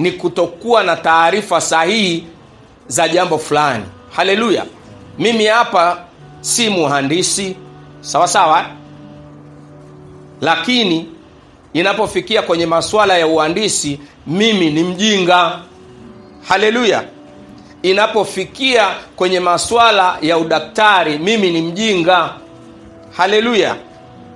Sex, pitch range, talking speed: male, 145-205 Hz, 85 wpm